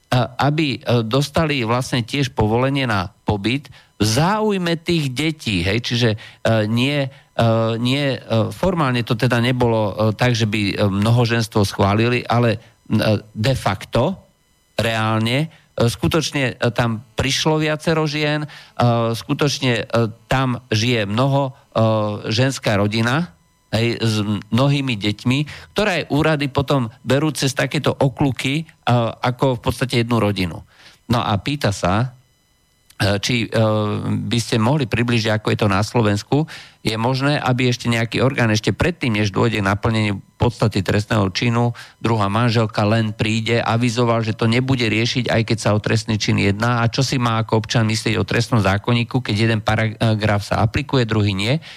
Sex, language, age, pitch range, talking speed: male, Slovak, 50-69, 110-135 Hz, 135 wpm